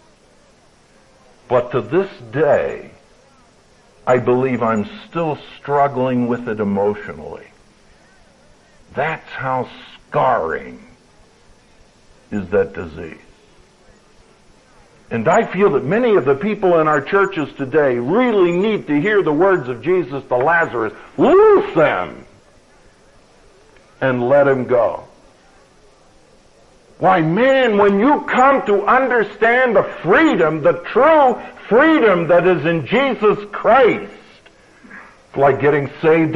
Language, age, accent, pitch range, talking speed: English, 60-79, American, 140-230 Hz, 110 wpm